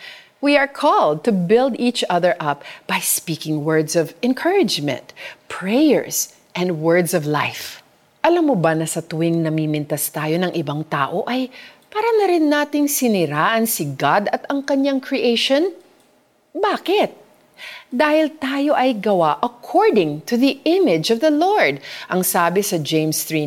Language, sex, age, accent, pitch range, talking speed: Filipino, female, 40-59, native, 160-255 Hz, 145 wpm